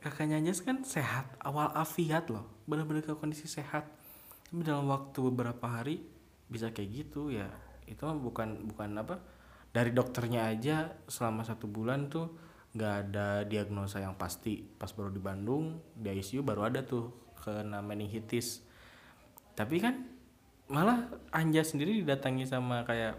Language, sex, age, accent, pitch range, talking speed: Indonesian, male, 20-39, native, 105-145 Hz, 140 wpm